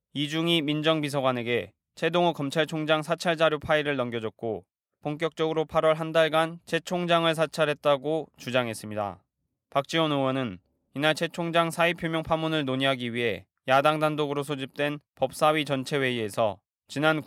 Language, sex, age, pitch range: Korean, male, 20-39, 130-155 Hz